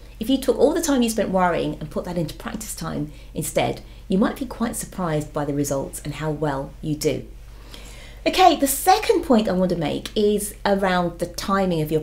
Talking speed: 215 wpm